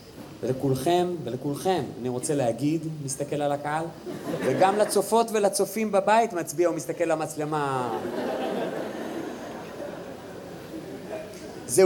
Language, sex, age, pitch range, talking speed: Hebrew, male, 30-49, 140-185 Hz, 85 wpm